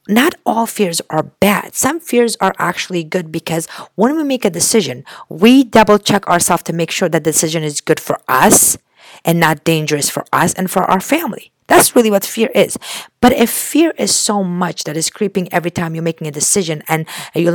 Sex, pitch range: female, 145-185 Hz